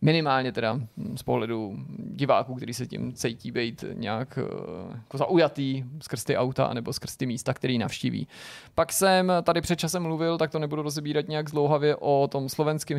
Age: 30-49